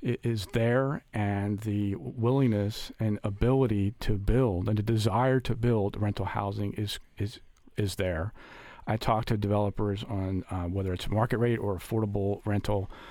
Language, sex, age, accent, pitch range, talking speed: English, male, 40-59, American, 100-115 Hz, 155 wpm